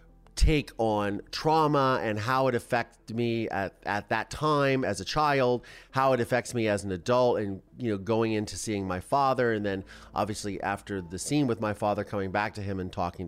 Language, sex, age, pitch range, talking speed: English, male, 30-49, 100-125 Hz, 205 wpm